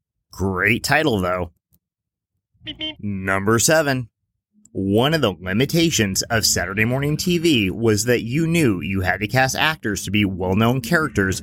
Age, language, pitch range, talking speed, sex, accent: 30-49, English, 100-145 Hz, 135 wpm, male, American